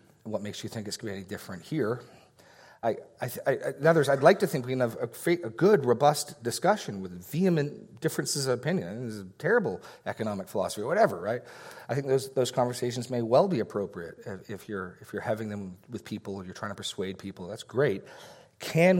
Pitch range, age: 110-155 Hz, 40-59